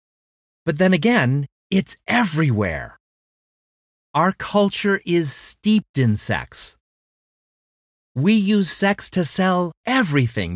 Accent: American